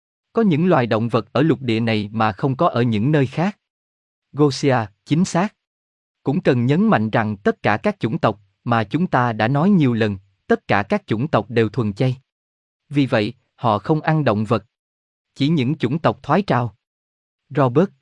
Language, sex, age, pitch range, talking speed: Vietnamese, male, 20-39, 110-150 Hz, 195 wpm